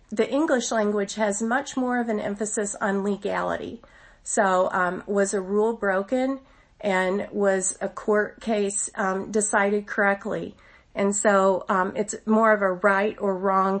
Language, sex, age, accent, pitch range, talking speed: English, female, 40-59, American, 195-225 Hz, 150 wpm